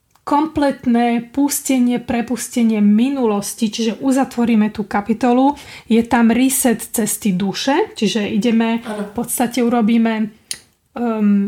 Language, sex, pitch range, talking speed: Czech, female, 215-250 Hz, 100 wpm